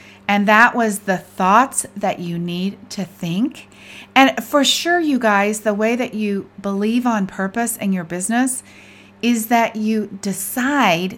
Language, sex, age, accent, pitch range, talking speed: English, female, 40-59, American, 180-235 Hz, 155 wpm